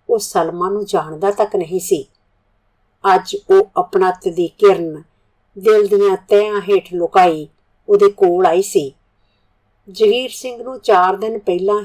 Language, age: Punjabi, 50-69